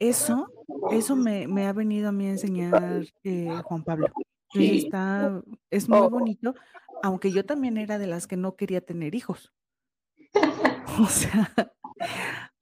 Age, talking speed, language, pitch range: 30-49, 145 wpm, Spanish, 185-220 Hz